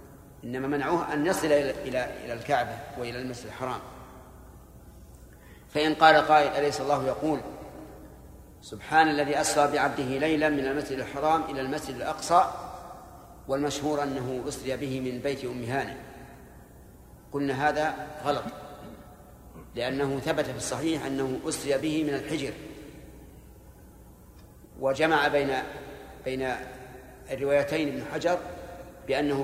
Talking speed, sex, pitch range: 110 wpm, male, 130-150 Hz